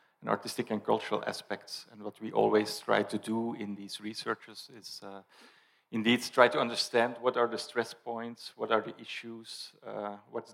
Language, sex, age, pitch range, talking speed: English, male, 40-59, 105-120 Hz, 175 wpm